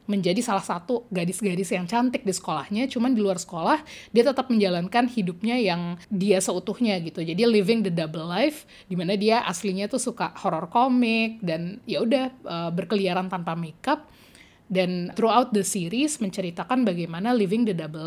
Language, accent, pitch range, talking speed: Indonesian, native, 180-225 Hz, 155 wpm